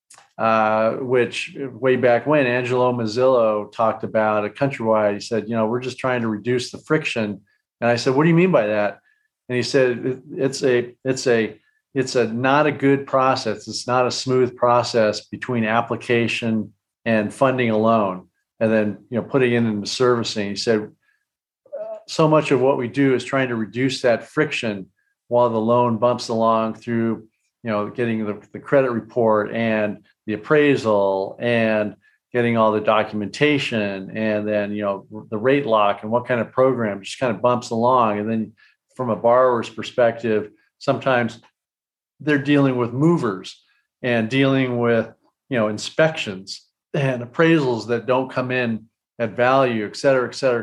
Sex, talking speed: male, 170 wpm